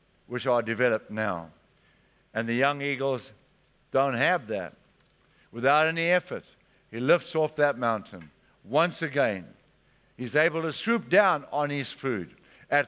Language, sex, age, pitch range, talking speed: English, male, 60-79, 125-160 Hz, 140 wpm